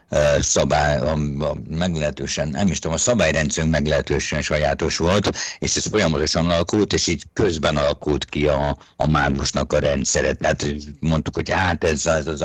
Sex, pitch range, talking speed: male, 70-80 Hz, 145 wpm